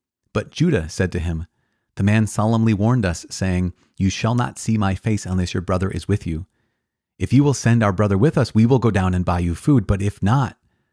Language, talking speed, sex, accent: English, 230 wpm, male, American